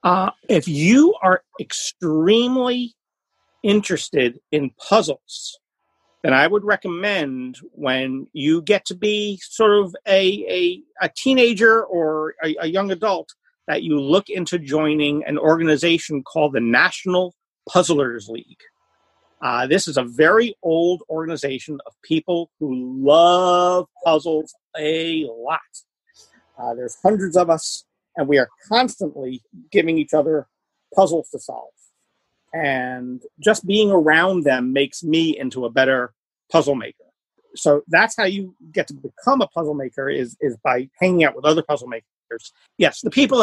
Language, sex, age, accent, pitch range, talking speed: English, male, 50-69, American, 150-210 Hz, 140 wpm